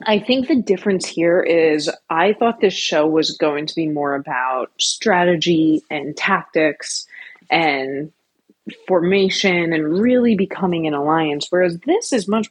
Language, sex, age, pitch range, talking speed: English, female, 30-49, 160-220 Hz, 145 wpm